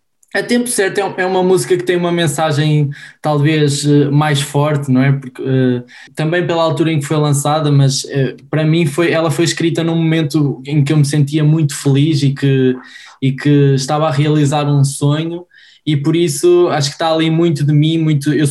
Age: 20-39